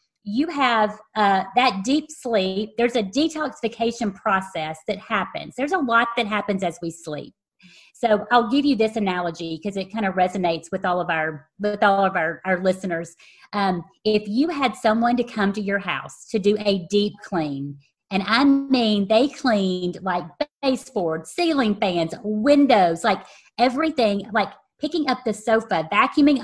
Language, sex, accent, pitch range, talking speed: English, female, American, 190-255 Hz, 170 wpm